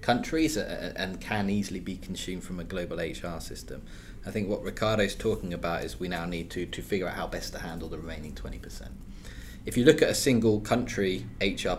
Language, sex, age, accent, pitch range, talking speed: English, male, 20-39, British, 90-105 Hz, 210 wpm